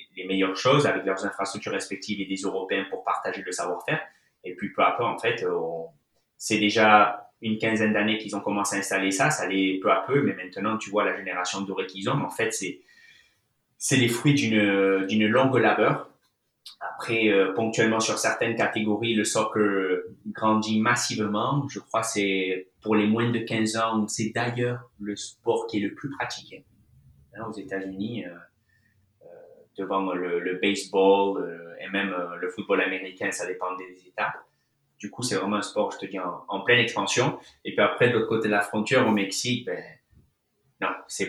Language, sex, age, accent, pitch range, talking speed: French, male, 20-39, French, 95-115 Hz, 190 wpm